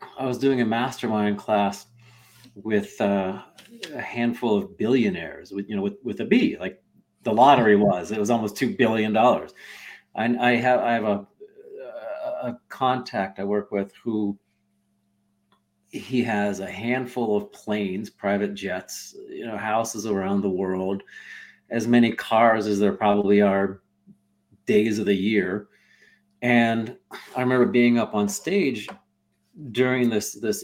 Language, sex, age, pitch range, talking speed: English, male, 40-59, 100-130 Hz, 145 wpm